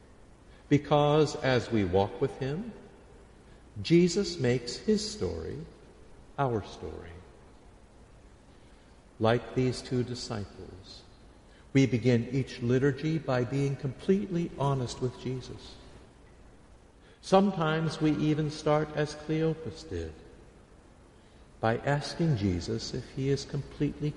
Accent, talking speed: American, 100 wpm